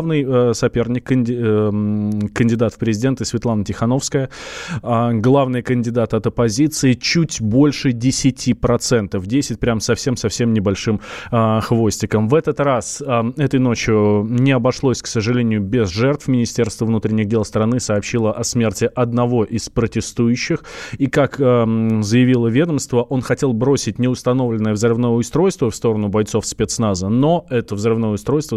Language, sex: Russian, male